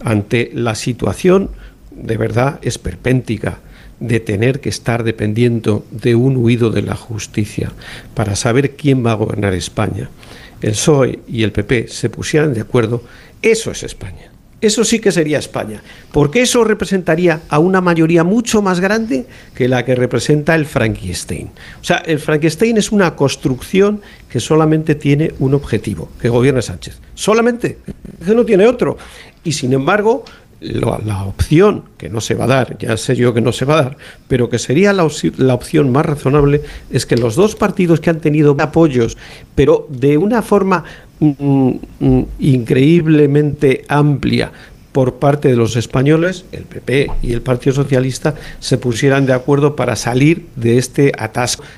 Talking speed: 160 wpm